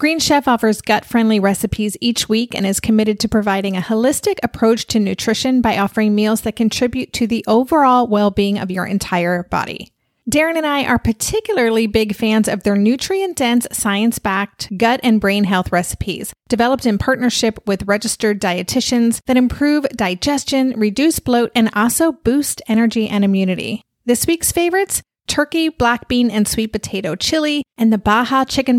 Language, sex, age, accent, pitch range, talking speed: English, female, 30-49, American, 210-265 Hz, 160 wpm